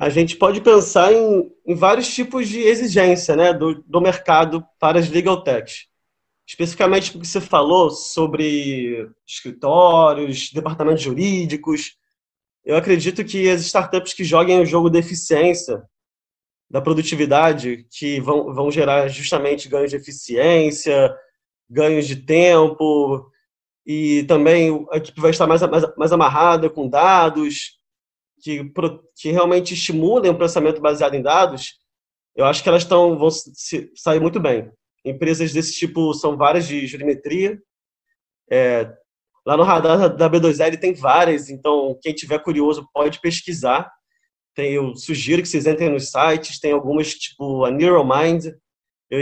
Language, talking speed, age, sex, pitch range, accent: Portuguese, 135 wpm, 20-39, male, 145-175 Hz, Brazilian